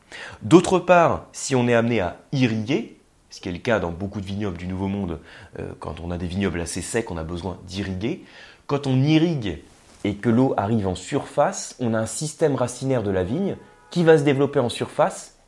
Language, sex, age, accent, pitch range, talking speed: French, male, 30-49, French, 95-135 Hz, 215 wpm